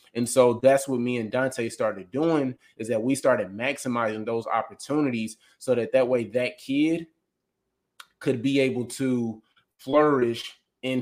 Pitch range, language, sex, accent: 115-130 Hz, English, male, American